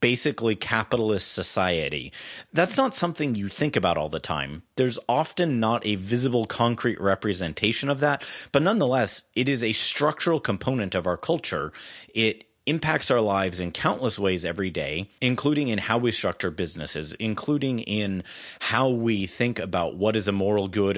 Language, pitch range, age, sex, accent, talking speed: English, 95-130 Hz, 30-49, male, American, 165 wpm